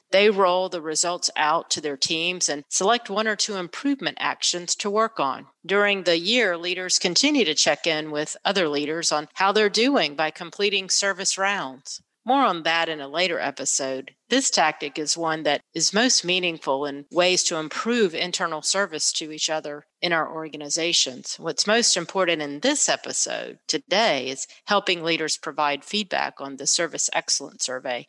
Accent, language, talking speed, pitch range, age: American, English, 175 wpm, 155-210 Hz, 40-59